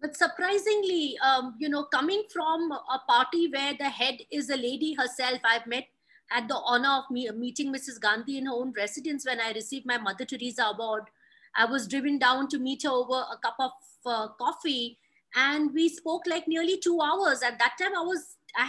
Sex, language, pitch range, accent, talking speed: female, English, 250-330 Hz, Indian, 200 wpm